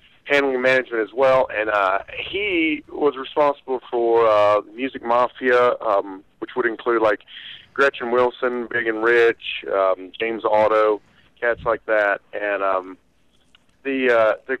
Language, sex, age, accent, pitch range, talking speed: English, male, 40-59, American, 105-135 Hz, 140 wpm